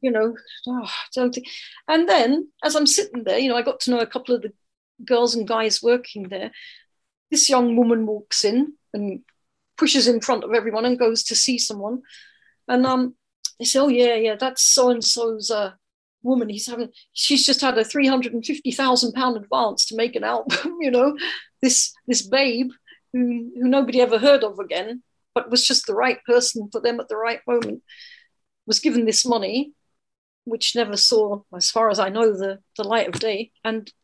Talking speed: 190 wpm